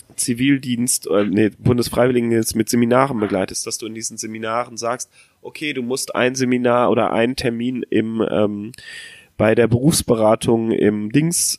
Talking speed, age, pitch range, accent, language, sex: 140 wpm, 30-49, 105-125 Hz, German, German, male